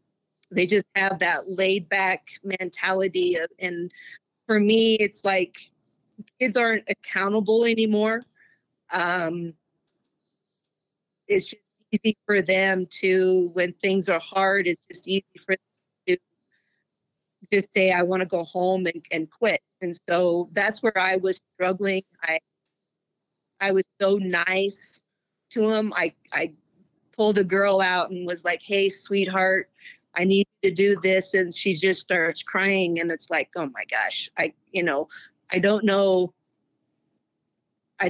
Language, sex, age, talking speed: English, female, 40-59, 145 wpm